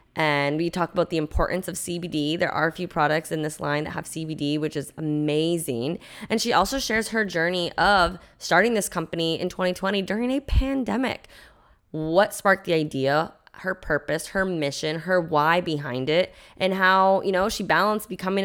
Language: English